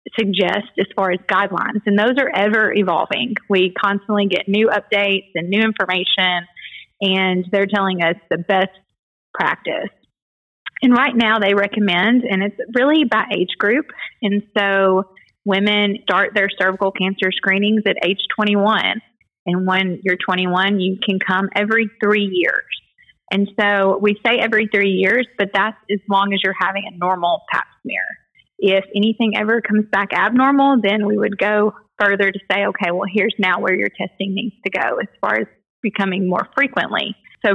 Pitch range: 190-220 Hz